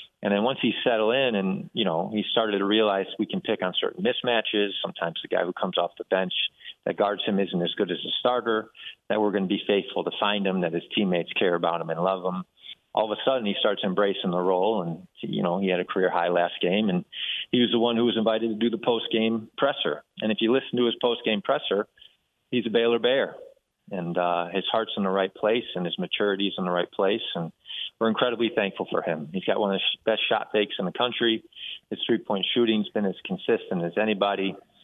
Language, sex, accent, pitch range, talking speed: English, male, American, 95-115 Hz, 240 wpm